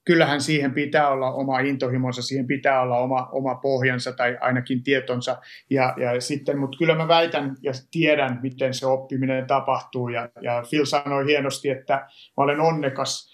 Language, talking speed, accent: Finnish, 165 wpm, native